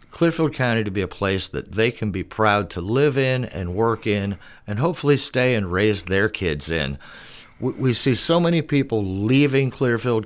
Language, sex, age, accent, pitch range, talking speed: English, male, 50-69, American, 105-130 Hz, 195 wpm